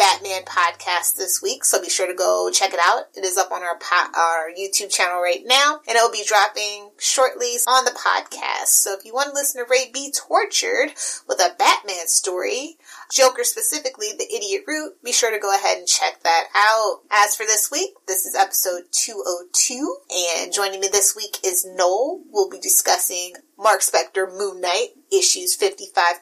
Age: 30-49